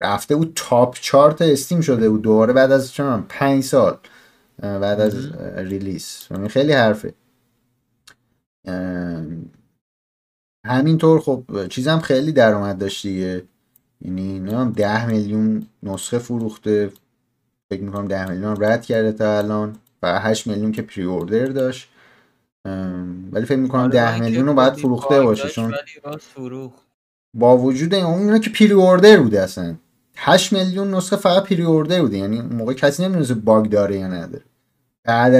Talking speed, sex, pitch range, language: 130 wpm, male, 100-150 Hz, Persian